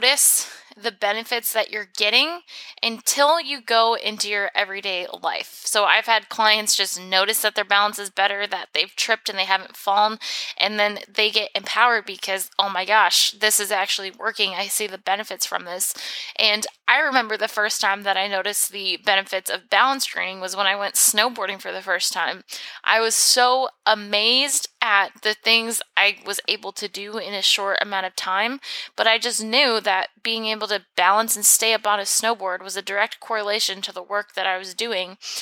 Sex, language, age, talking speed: female, English, 20-39, 195 wpm